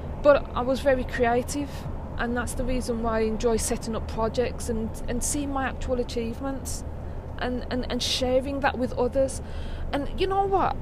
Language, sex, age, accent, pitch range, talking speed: English, female, 20-39, British, 230-275 Hz, 175 wpm